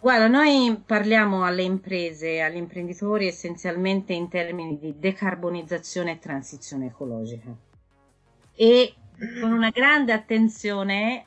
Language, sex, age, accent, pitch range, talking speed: Italian, female, 30-49, native, 165-225 Hz, 105 wpm